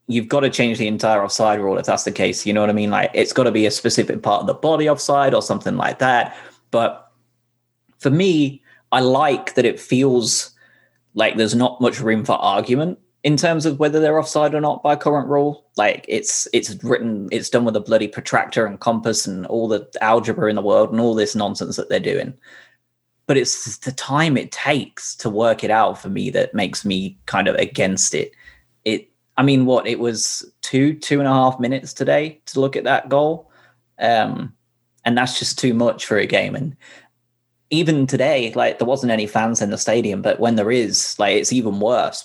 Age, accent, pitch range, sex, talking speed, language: 20-39, British, 110-140 Hz, male, 215 wpm, English